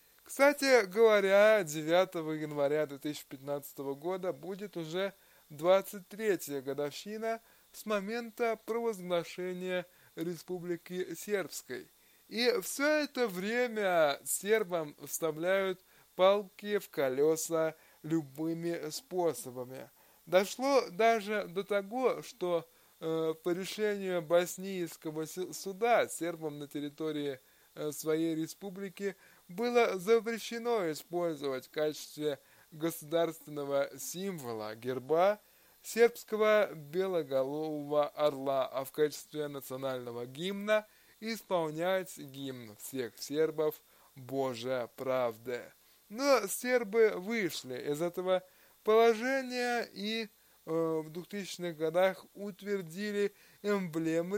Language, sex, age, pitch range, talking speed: Russian, male, 20-39, 150-210 Hz, 85 wpm